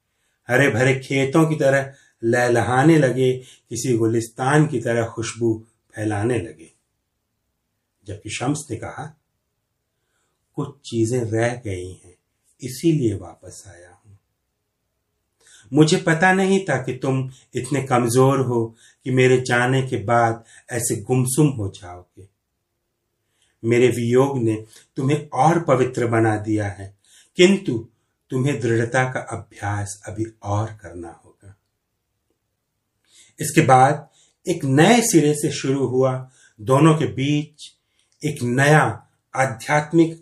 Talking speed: 115 wpm